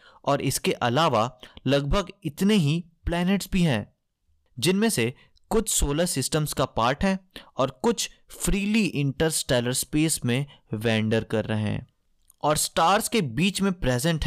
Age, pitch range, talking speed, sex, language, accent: 20-39, 125-180 Hz, 140 wpm, male, Hindi, native